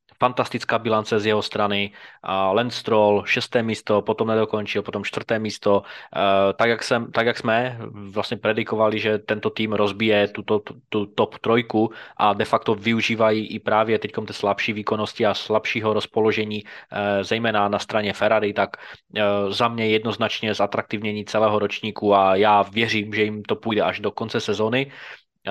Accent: native